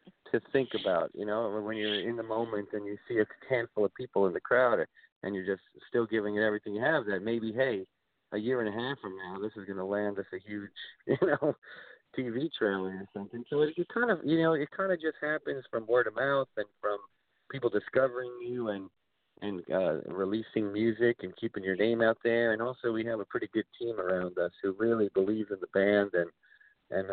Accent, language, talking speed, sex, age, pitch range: American, English, 230 wpm, male, 50-69, 95-115 Hz